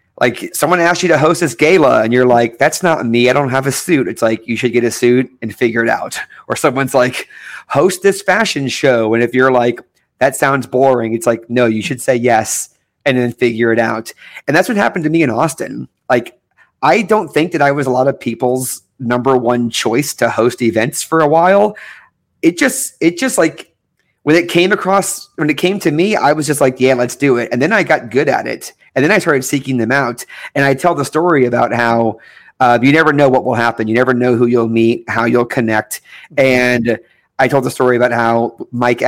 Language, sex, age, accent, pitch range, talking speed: English, male, 30-49, American, 120-150 Hz, 230 wpm